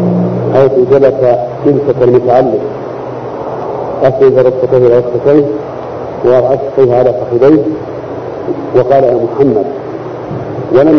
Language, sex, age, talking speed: Arabic, male, 50-69, 80 wpm